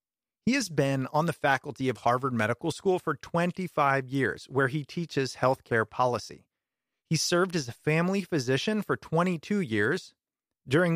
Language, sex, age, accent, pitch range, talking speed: English, male, 30-49, American, 130-175 Hz, 155 wpm